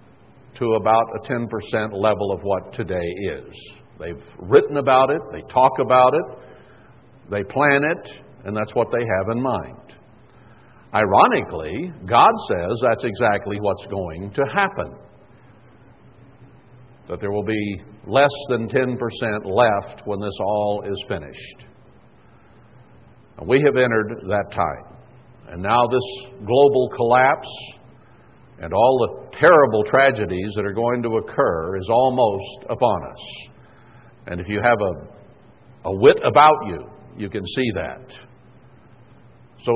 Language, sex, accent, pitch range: English, male, American, 105-125 Hz